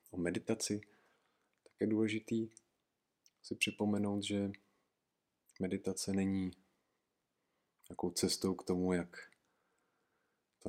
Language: Czech